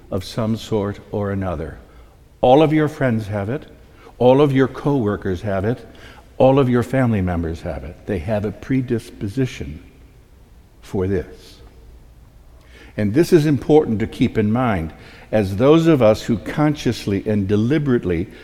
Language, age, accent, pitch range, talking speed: English, 60-79, American, 95-125 Hz, 150 wpm